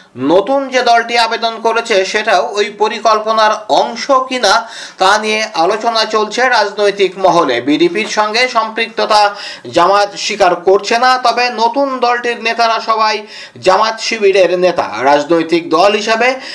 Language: Bengali